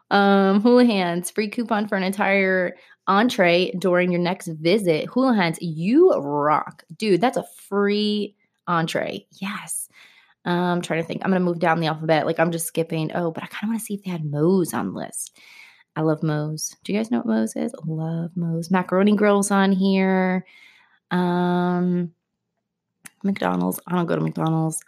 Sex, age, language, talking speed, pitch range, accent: female, 20-39, English, 180 wpm, 170-210 Hz, American